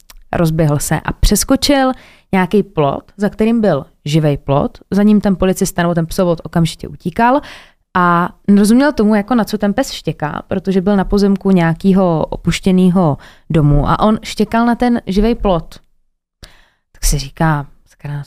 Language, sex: Czech, female